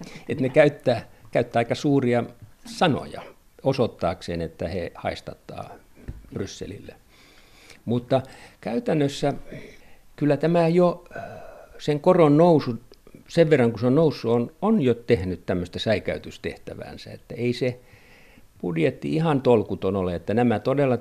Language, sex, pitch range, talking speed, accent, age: Finnish, male, 100-130 Hz, 120 wpm, native, 50-69